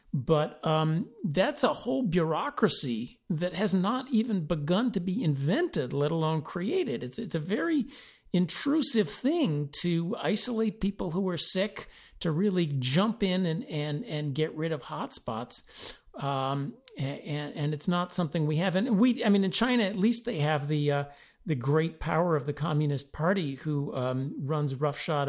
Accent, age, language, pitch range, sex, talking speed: American, 50-69, English, 145-200 Hz, male, 170 wpm